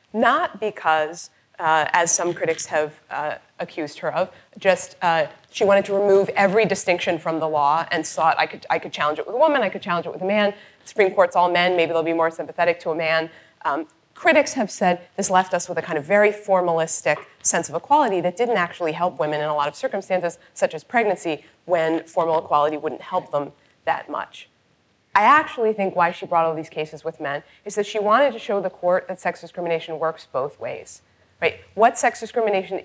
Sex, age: female, 30-49